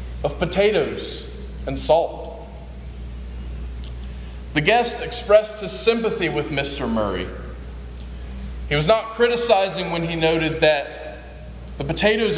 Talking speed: 105 wpm